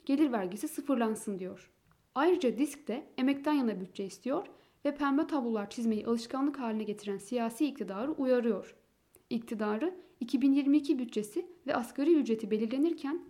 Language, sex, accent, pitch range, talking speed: Turkish, female, native, 215-290 Hz, 125 wpm